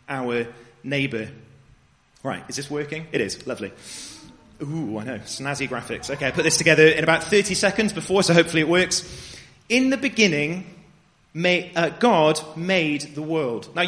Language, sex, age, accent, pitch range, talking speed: English, male, 30-49, British, 155-200 Hz, 165 wpm